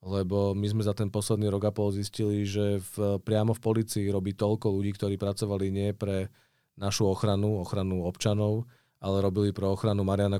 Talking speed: 175 wpm